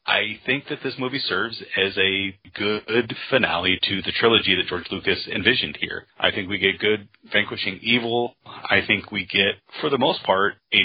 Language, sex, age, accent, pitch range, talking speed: English, male, 30-49, American, 95-115 Hz, 190 wpm